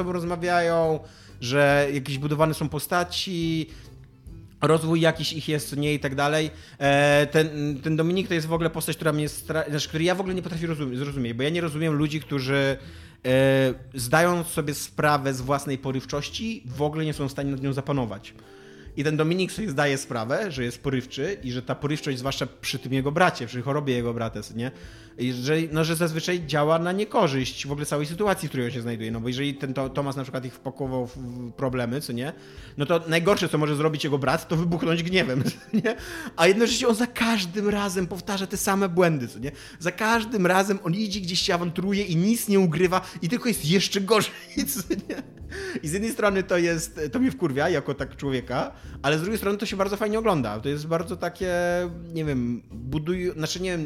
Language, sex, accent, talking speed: Polish, male, native, 200 wpm